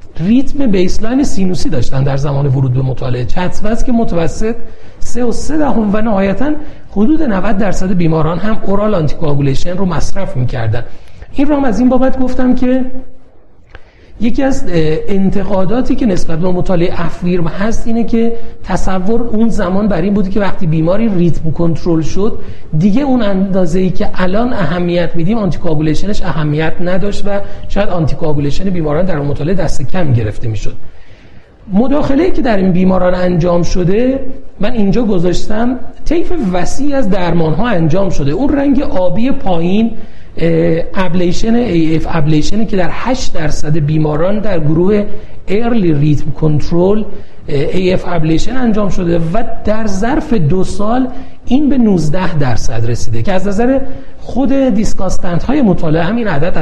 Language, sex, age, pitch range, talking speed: Persian, male, 40-59, 160-225 Hz, 145 wpm